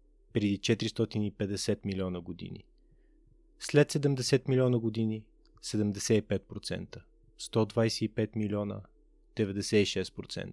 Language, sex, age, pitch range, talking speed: Bulgarian, male, 30-49, 105-135 Hz, 70 wpm